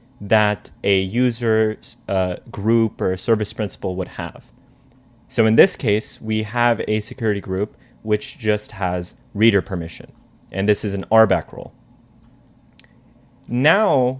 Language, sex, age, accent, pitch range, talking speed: English, male, 30-49, American, 100-125 Hz, 125 wpm